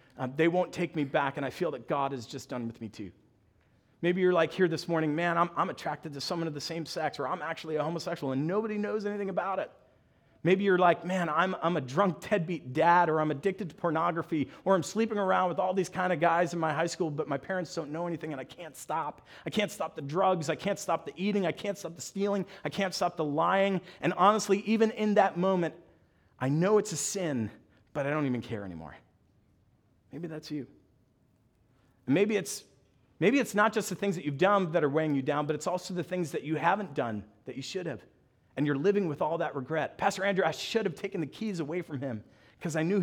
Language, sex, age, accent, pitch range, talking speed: English, male, 40-59, American, 145-185 Hz, 240 wpm